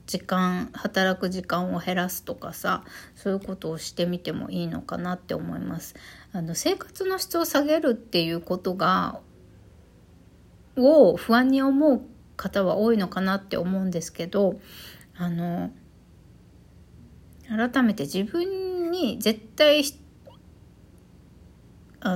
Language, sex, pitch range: Japanese, female, 160-255 Hz